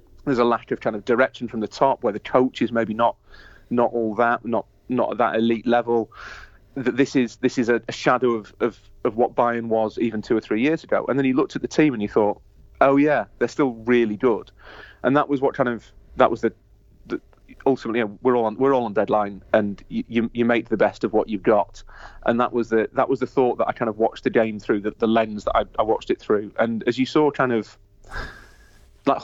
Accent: British